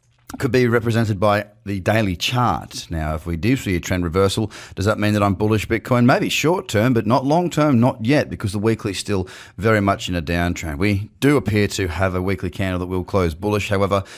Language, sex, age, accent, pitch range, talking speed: English, male, 30-49, Australian, 90-110 Hz, 230 wpm